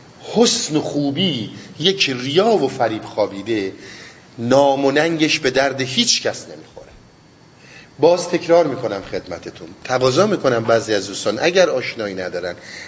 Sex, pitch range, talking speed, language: male, 130-175 Hz, 120 wpm, Persian